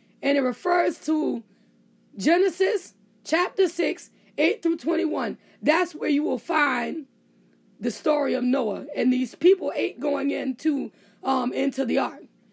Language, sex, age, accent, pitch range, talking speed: English, female, 20-39, American, 245-330 Hz, 135 wpm